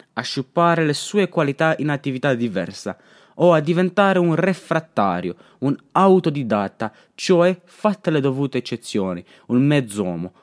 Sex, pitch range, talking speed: male, 140-175 Hz, 125 wpm